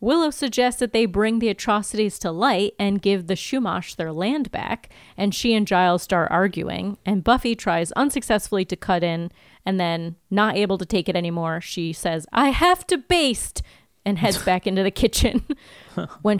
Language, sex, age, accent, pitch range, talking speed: English, female, 30-49, American, 175-235 Hz, 185 wpm